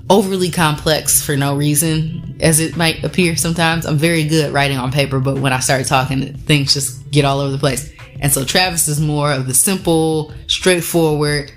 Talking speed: 195 wpm